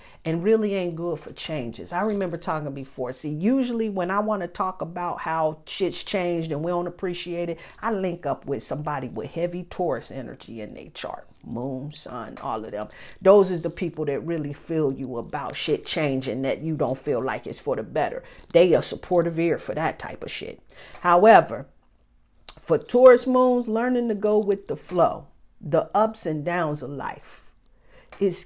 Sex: female